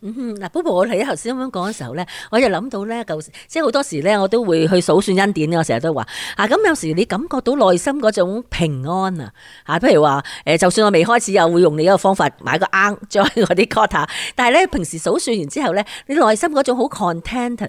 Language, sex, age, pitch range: Chinese, female, 40-59, 170-255 Hz